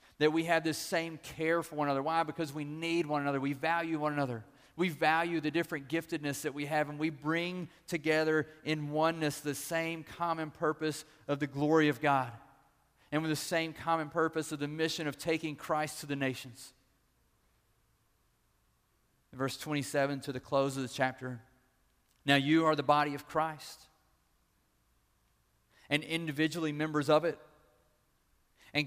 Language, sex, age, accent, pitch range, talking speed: English, male, 40-59, American, 130-160 Hz, 160 wpm